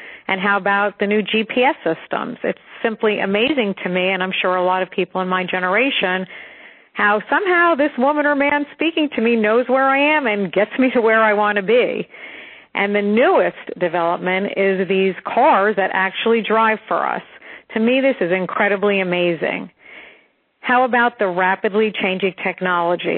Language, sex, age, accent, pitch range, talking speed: English, female, 50-69, American, 185-235 Hz, 175 wpm